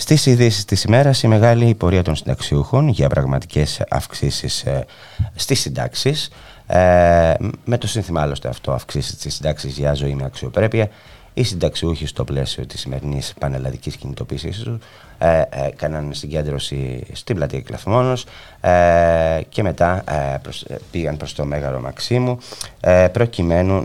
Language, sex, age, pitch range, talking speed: Greek, male, 30-49, 75-110 Hz, 120 wpm